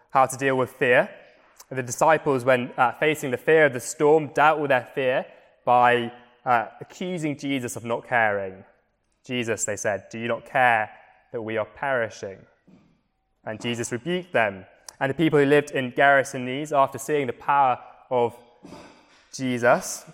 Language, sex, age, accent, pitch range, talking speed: English, male, 20-39, British, 120-150 Hz, 165 wpm